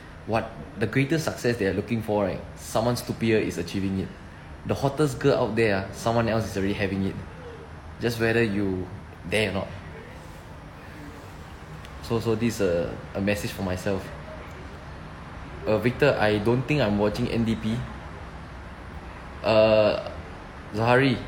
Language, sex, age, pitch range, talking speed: English, male, 20-39, 80-115 Hz, 140 wpm